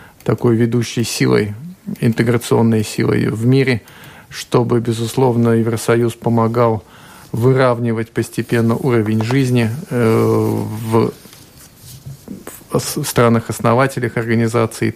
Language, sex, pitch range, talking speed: Russian, male, 110-120 Hz, 70 wpm